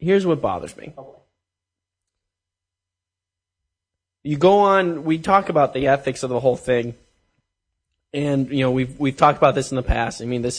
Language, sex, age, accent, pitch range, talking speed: English, male, 20-39, American, 120-150 Hz, 170 wpm